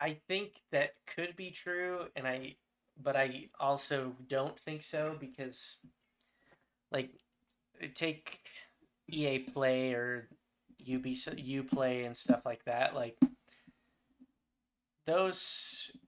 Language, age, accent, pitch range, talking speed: English, 10-29, American, 125-155 Hz, 110 wpm